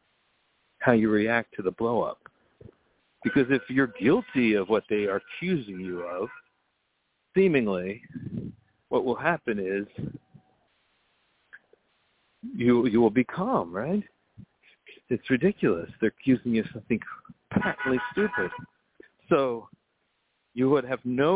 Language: English